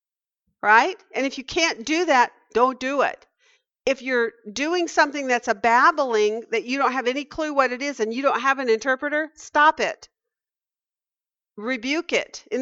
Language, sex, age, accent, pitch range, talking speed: English, female, 50-69, American, 235-305 Hz, 175 wpm